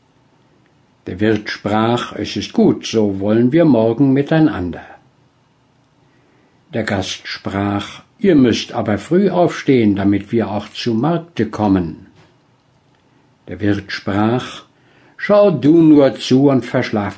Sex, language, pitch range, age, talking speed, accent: male, German, 105-145 Hz, 60-79, 120 wpm, German